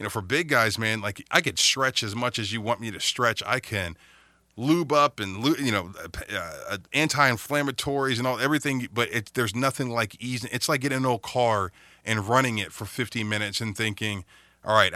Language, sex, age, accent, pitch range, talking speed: English, male, 30-49, American, 100-120 Hz, 220 wpm